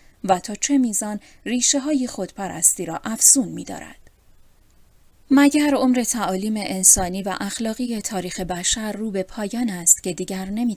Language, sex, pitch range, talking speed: Persian, female, 180-240 Hz, 145 wpm